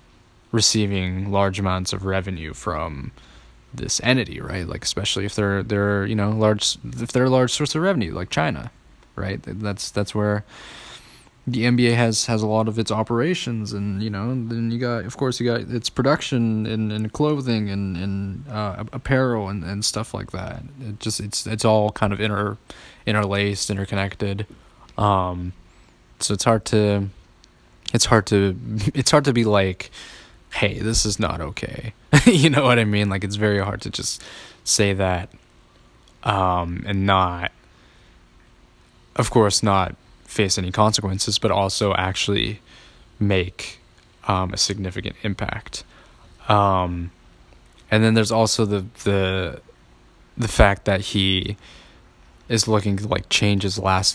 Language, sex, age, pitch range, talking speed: English, male, 20-39, 95-115 Hz, 155 wpm